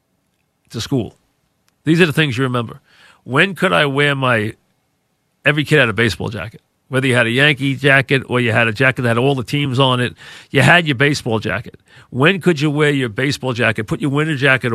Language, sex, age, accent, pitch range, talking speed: English, male, 40-59, American, 115-140 Hz, 215 wpm